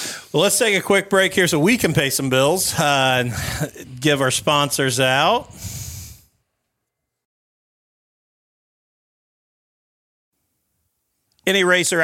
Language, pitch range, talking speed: English, 135-170 Hz, 105 wpm